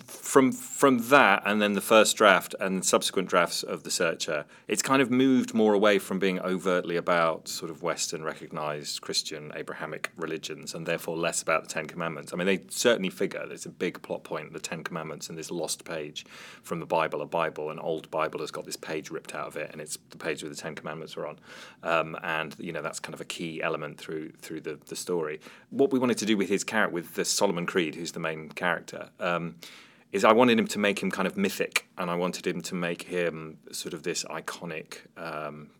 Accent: British